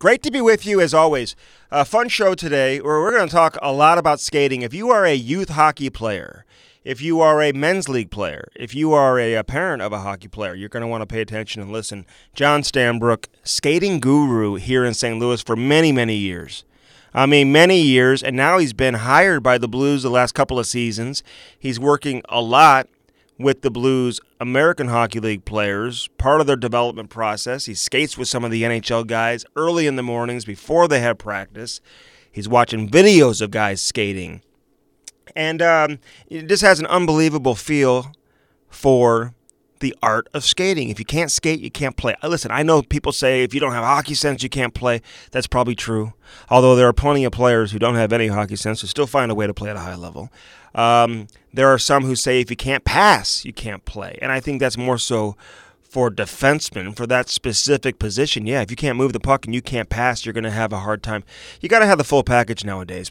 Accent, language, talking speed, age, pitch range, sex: American, English, 220 wpm, 30-49, 115-145 Hz, male